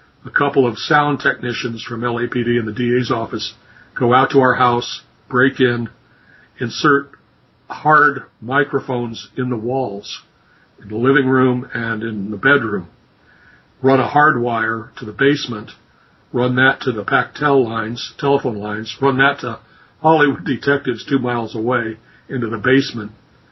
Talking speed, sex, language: 150 wpm, male, English